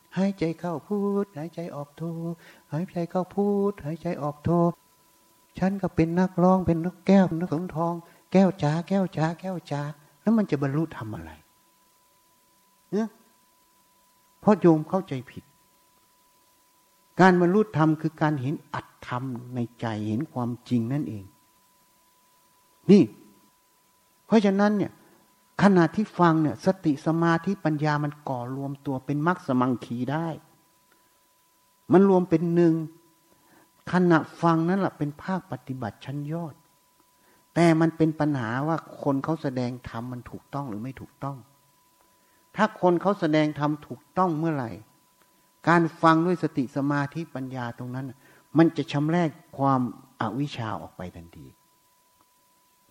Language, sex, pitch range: Thai, male, 135-180 Hz